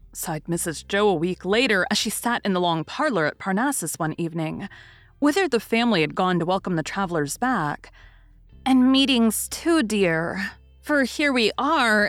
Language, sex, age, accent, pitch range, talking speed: English, female, 30-49, American, 165-245 Hz, 175 wpm